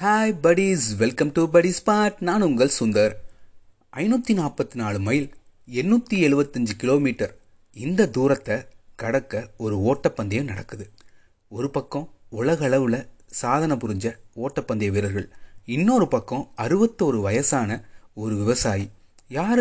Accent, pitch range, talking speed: native, 105-160 Hz, 110 wpm